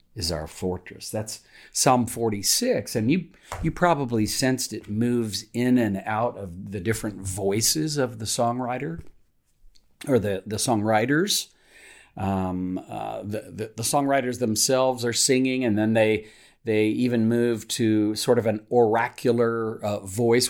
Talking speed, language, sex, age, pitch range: 145 wpm, English, male, 50-69, 100-120 Hz